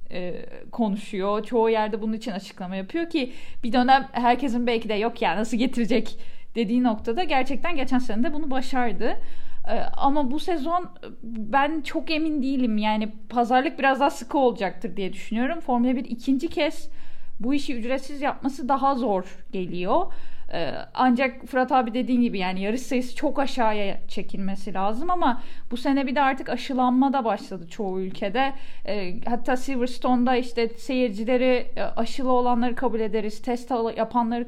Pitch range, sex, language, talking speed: 210-265 Hz, female, Turkish, 145 wpm